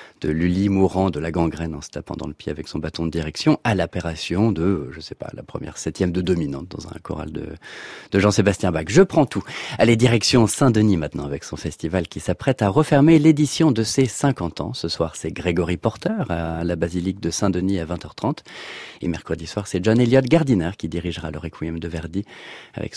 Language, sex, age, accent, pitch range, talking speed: French, male, 40-59, French, 85-115 Hz, 210 wpm